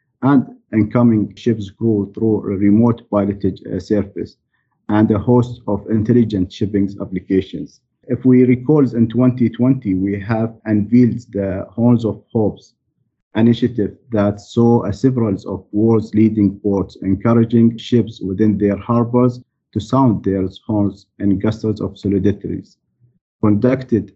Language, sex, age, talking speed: English, male, 50-69, 125 wpm